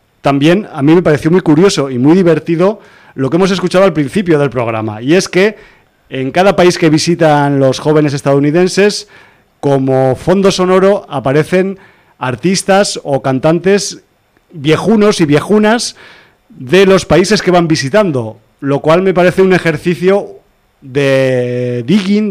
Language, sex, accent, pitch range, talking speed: Spanish, male, Spanish, 135-175 Hz, 145 wpm